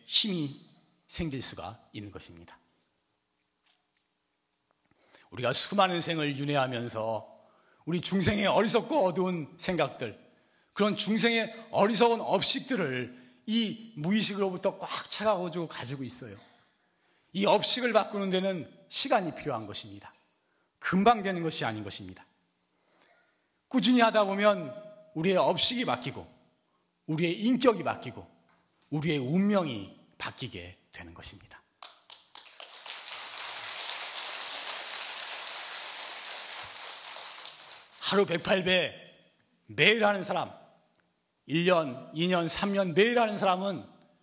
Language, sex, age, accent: Korean, male, 40-59, native